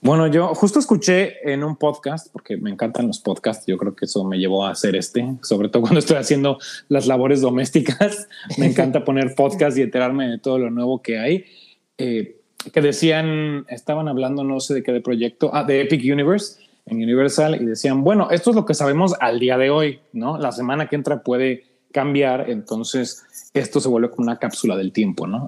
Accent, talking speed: Mexican, 205 wpm